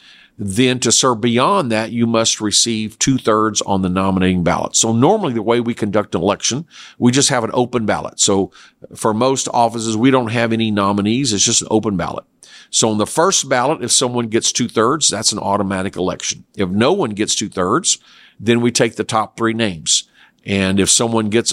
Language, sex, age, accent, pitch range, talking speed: English, male, 50-69, American, 100-120 Hz, 195 wpm